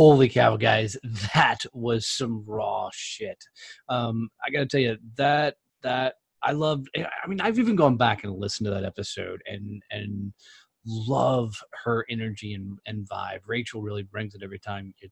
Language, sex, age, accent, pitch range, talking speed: English, male, 20-39, American, 110-155 Hz, 175 wpm